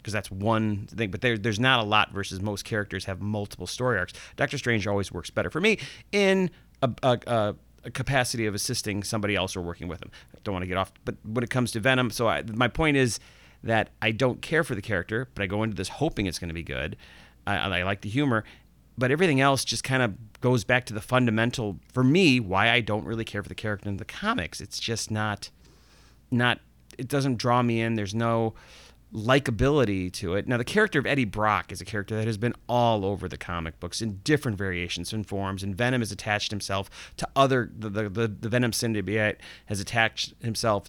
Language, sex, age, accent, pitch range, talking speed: English, male, 30-49, American, 100-120 Hz, 225 wpm